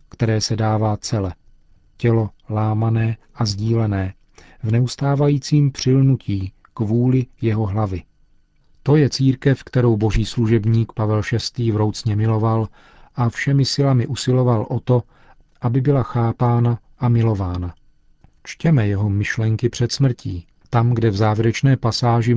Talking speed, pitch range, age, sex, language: 120 wpm, 110-125 Hz, 40-59, male, Czech